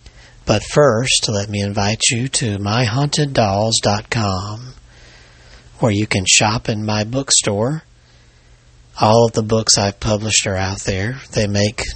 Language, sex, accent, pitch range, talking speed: English, male, American, 100-115 Hz, 130 wpm